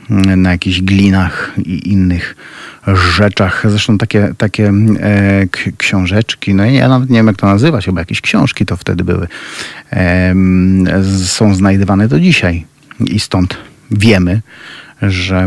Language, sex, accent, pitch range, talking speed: Polish, male, native, 95-110 Hz, 125 wpm